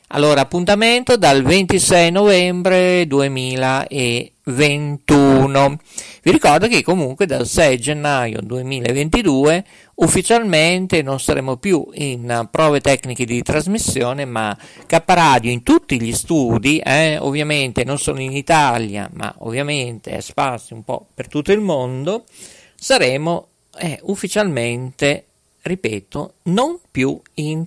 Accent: native